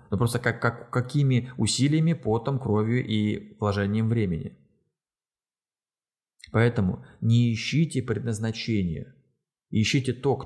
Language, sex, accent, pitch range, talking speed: Russian, male, native, 105-130 Hz, 105 wpm